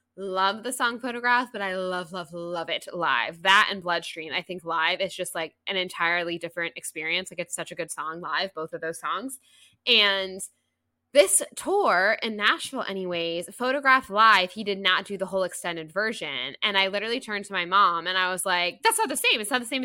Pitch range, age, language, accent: 175-220 Hz, 10-29, English, American